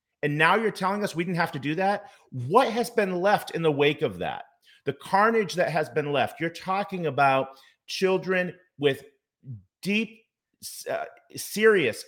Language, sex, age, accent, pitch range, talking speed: English, male, 40-59, American, 110-150 Hz, 170 wpm